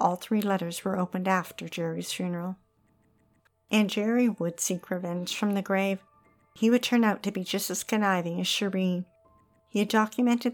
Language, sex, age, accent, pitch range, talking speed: English, female, 50-69, American, 180-215 Hz, 170 wpm